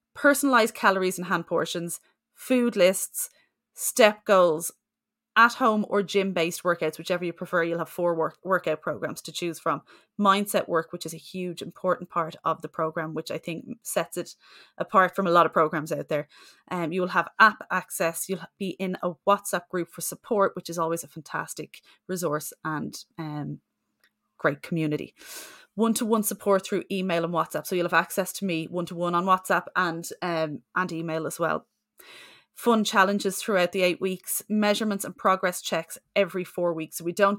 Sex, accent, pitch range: female, Irish, 165-195 Hz